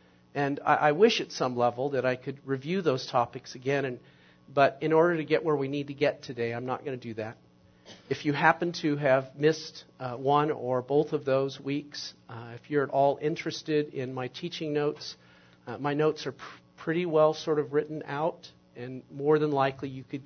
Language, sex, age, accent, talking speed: English, male, 50-69, American, 205 wpm